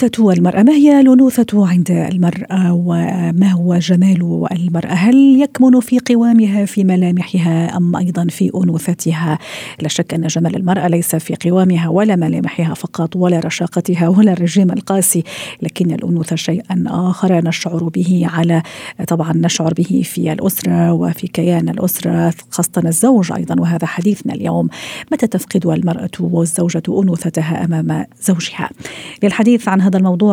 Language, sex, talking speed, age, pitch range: Arabic, female, 135 wpm, 50-69, 165-195 Hz